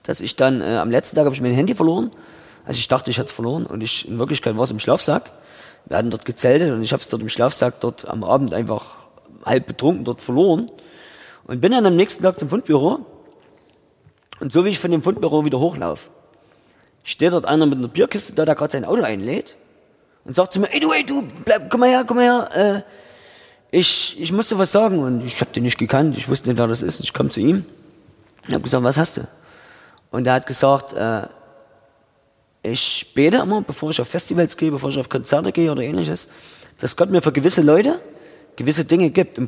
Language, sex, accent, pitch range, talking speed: German, male, German, 125-160 Hz, 230 wpm